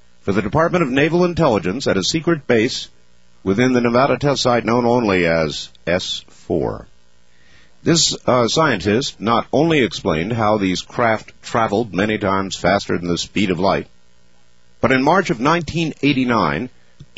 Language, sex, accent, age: English, male, American, 50-69